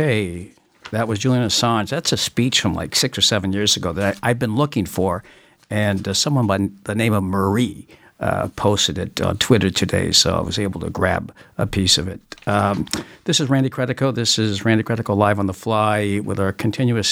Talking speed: 215 wpm